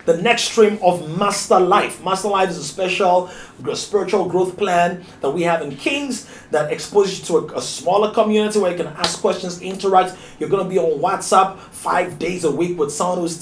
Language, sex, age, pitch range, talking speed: English, male, 30-49, 175-220 Hz, 200 wpm